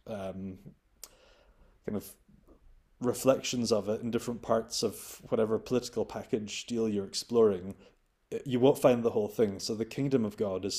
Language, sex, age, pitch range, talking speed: English, male, 20-39, 105-125 Hz, 155 wpm